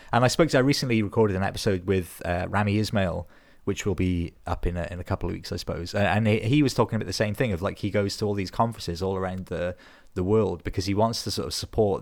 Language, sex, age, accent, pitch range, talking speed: English, male, 20-39, British, 95-115 Hz, 275 wpm